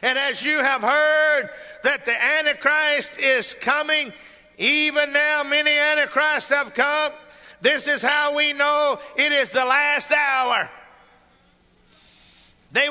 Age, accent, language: 50-69, American, English